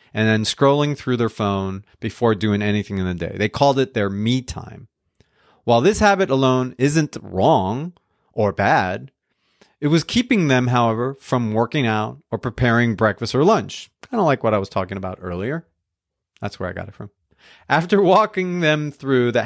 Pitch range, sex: 105-140 Hz, male